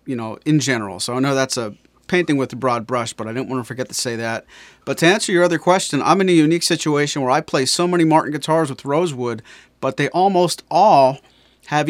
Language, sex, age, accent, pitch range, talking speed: English, male, 40-59, American, 125-155 Hz, 240 wpm